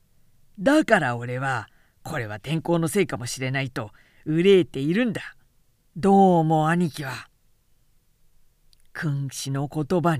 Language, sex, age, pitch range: Japanese, female, 40-59, 130-185 Hz